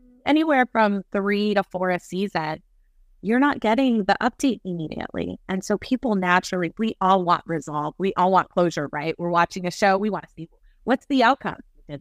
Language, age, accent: English, 30-49, American